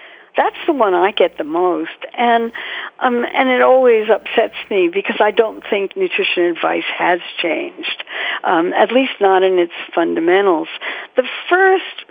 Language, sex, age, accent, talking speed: English, female, 60-79, American, 155 wpm